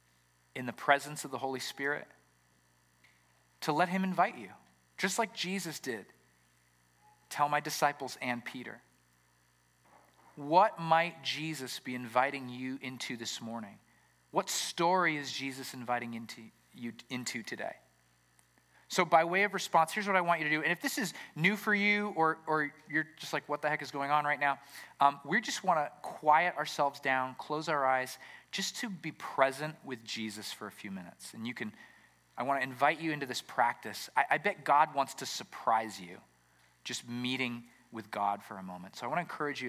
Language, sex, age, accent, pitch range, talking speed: English, male, 30-49, American, 95-155 Hz, 185 wpm